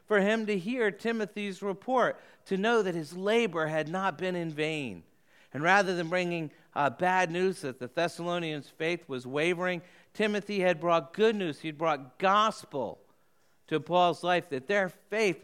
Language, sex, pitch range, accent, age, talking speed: English, male, 145-195 Hz, American, 50-69, 165 wpm